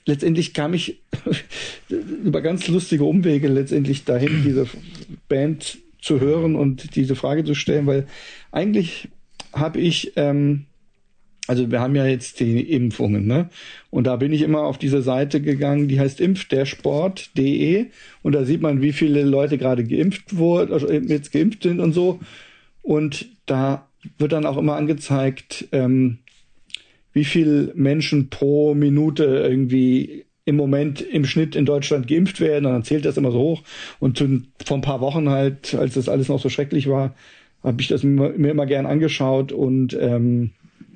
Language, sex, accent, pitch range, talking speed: German, male, German, 135-160 Hz, 165 wpm